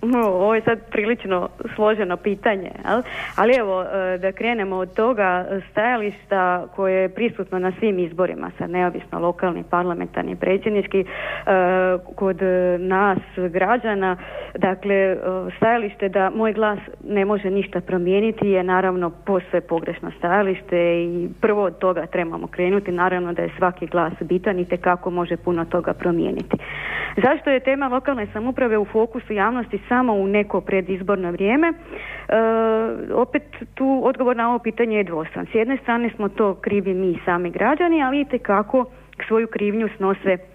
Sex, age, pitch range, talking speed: female, 30-49, 185-225 Hz, 145 wpm